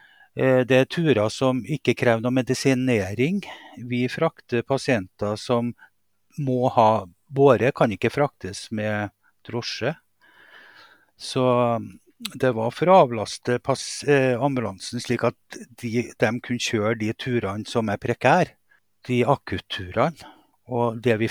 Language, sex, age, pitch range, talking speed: English, male, 50-69, 110-140 Hz, 130 wpm